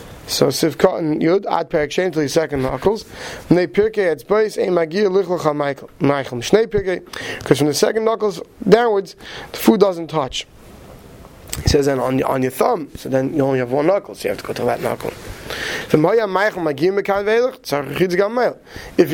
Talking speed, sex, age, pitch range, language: 145 wpm, male, 30-49, 160-220 Hz, English